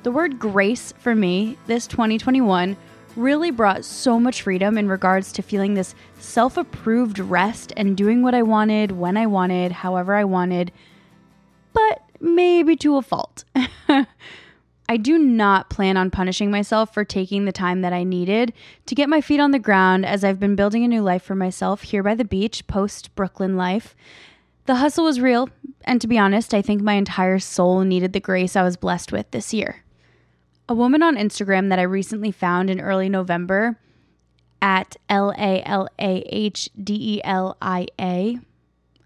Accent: American